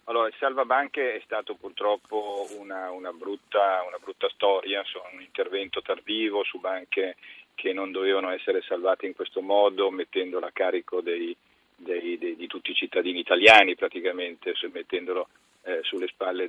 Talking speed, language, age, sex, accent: 150 wpm, Italian, 40-59, male, native